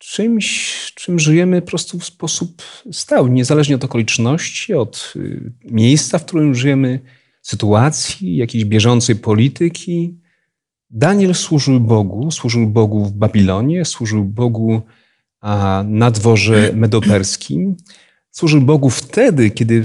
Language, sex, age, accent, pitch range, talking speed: Polish, male, 40-59, native, 115-145 Hz, 110 wpm